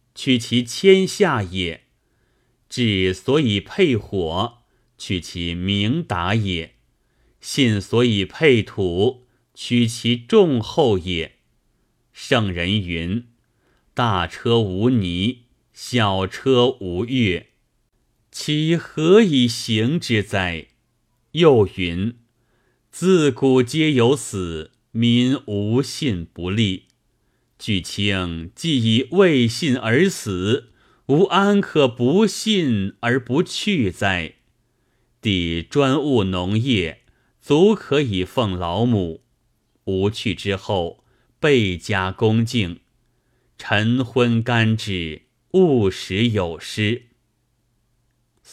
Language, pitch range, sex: Chinese, 100-125 Hz, male